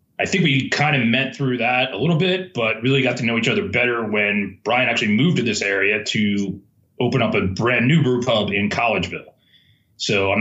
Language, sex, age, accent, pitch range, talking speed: English, male, 30-49, American, 100-125 Hz, 220 wpm